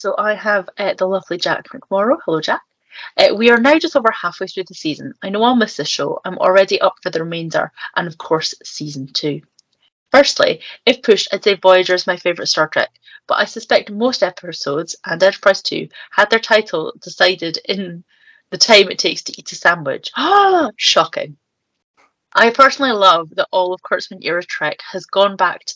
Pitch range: 180-240 Hz